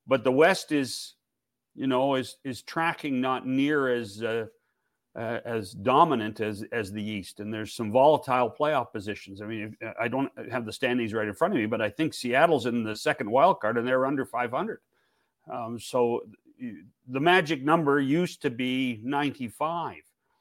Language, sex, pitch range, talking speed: English, male, 110-140 Hz, 175 wpm